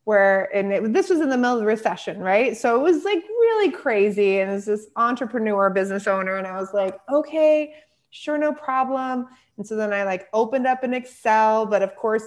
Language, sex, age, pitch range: English, female, 20-39, 190-235 Hz